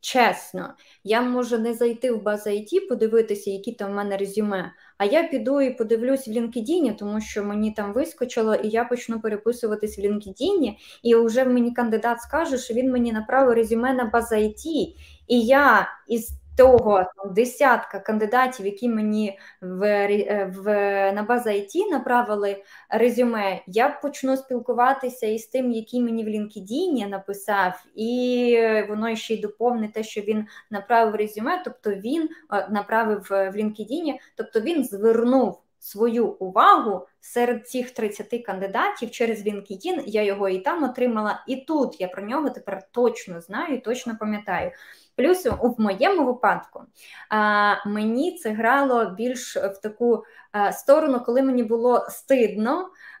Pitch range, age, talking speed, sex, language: 210-250 Hz, 20-39, 140 wpm, female, Ukrainian